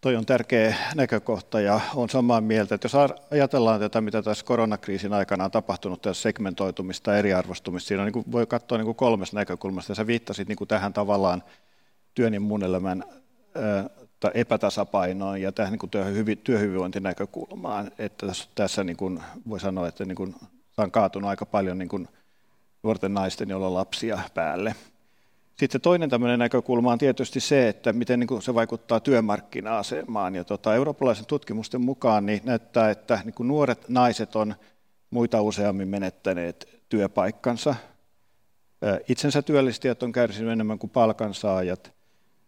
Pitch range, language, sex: 100-120 Hz, Finnish, male